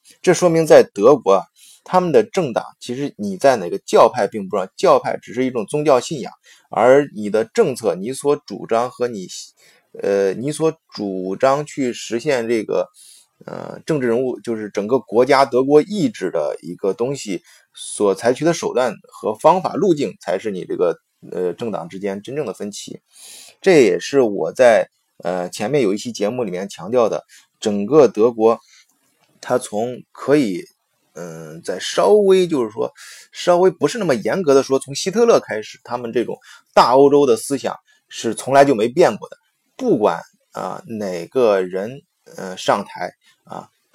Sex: male